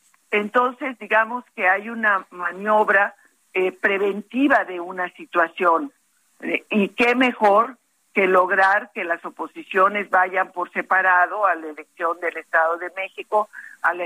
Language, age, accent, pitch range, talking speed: Spanish, 50-69, Mexican, 180-230 Hz, 130 wpm